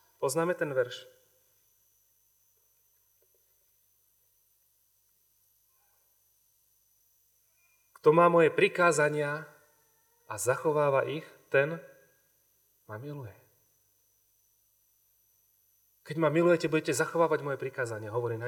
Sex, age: male, 30-49